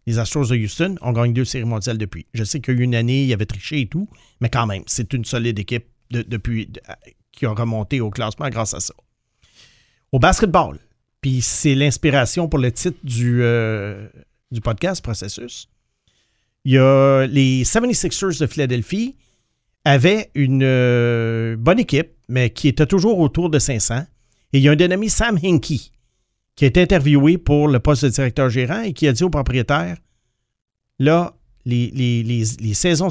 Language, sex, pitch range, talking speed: English, male, 115-145 Hz, 190 wpm